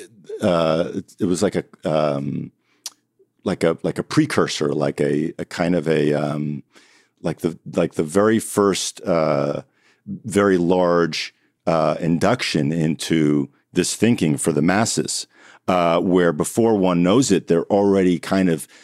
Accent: American